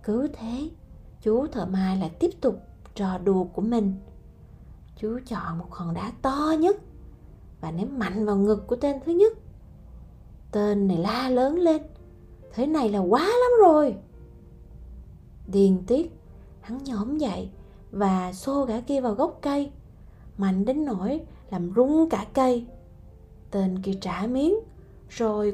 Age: 20-39